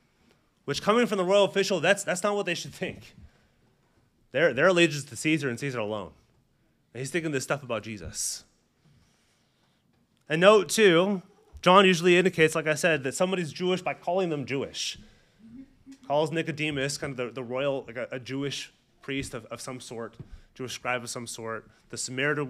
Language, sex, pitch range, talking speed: English, male, 125-180 Hz, 180 wpm